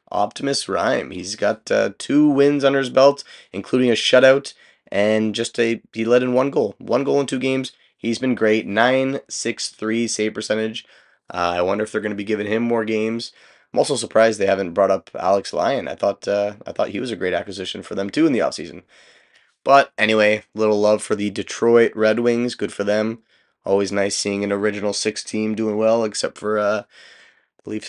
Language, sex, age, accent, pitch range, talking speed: English, male, 20-39, American, 100-120 Hz, 205 wpm